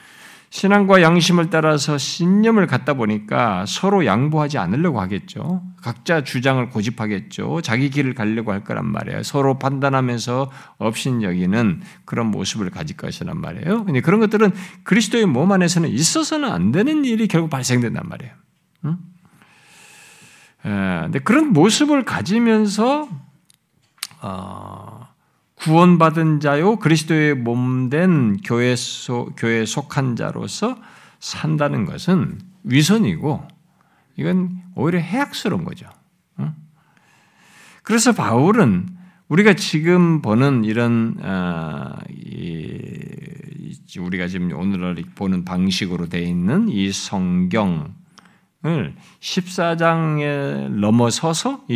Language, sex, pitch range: Korean, male, 120-185 Hz